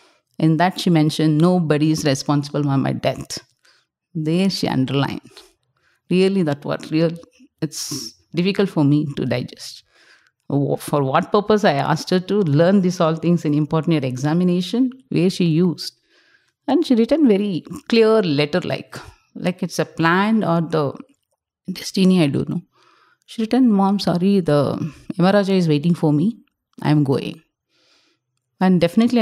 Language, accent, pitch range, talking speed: English, Indian, 150-205 Hz, 145 wpm